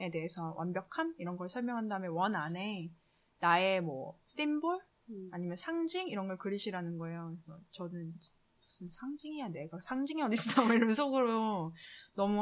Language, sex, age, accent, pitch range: Korean, female, 20-39, native, 175-235 Hz